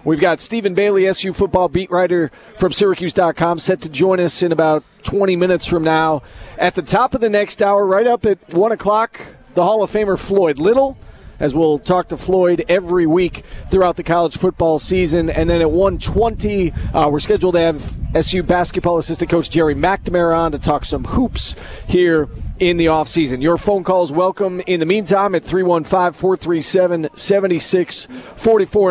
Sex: male